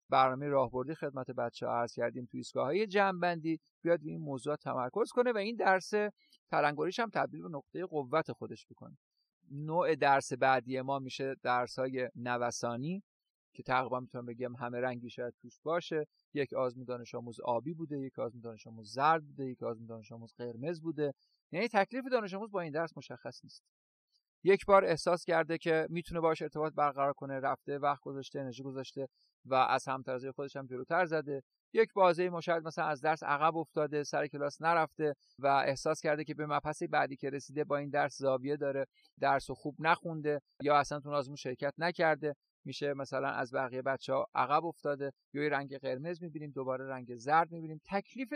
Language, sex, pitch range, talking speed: Persian, male, 130-165 Hz, 175 wpm